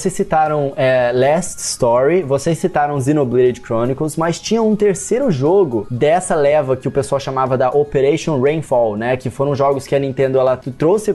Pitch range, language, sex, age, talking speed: 130-170 Hz, Portuguese, male, 20-39, 170 wpm